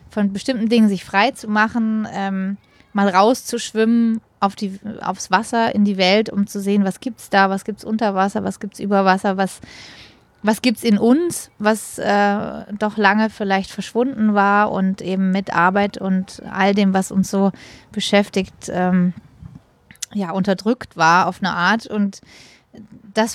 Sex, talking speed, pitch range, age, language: female, 165 wpm, 195-230 Hz, 20-39, German